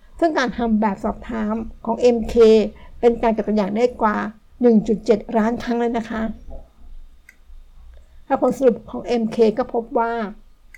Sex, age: female, 60-79